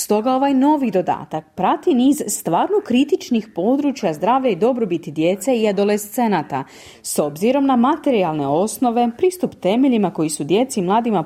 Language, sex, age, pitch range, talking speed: Croatian, female, 30-49, 175-255 Hz, 145 wpm